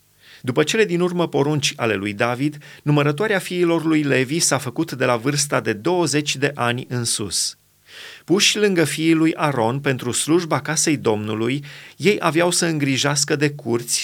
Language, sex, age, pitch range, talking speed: Romanian, male, 30-49, 130-165 Hz, 160 wpm